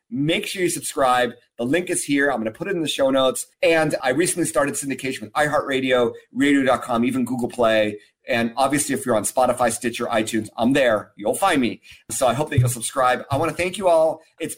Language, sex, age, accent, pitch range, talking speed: English, male, 30-49, American, 115-155 Hz, 220 wpm